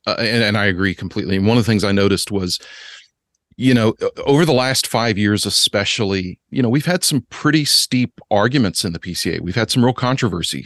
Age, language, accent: 40-59, English, American